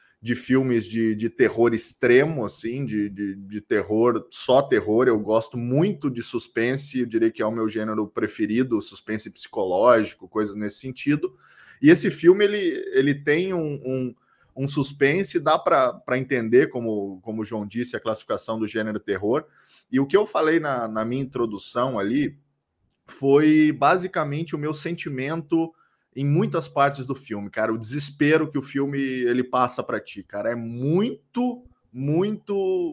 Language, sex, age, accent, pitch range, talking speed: Portuguese, male, 20-39, Brazilian, 120-155 Hz, 160 wpm